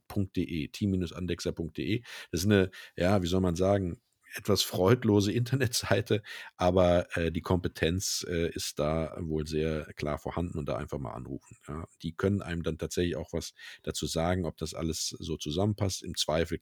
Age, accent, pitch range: 50-69, German, 80-95 Hz